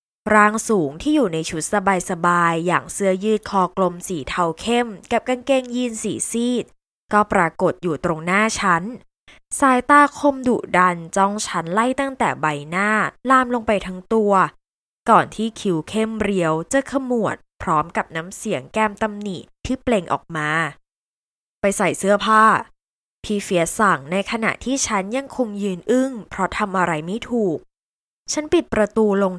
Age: 20-39